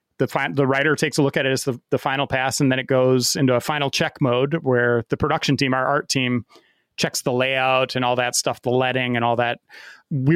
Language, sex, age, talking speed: English, male, 30-49, 250 wpm